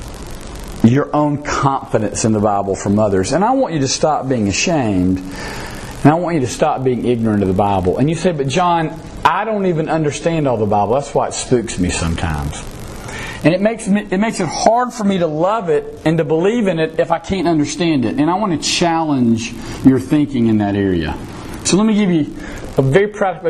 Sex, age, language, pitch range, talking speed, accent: male, 40-59, English, 125-200 Hz, 215 wpm, American